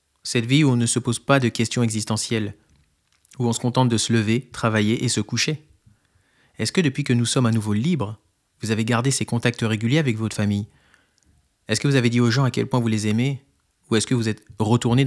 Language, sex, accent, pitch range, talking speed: French, male, French, 105-130 Hz, 235 wpm